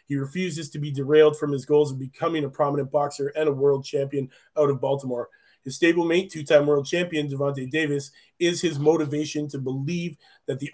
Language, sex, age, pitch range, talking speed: English, male, 30-49, 140-160 Hz, 190 wpm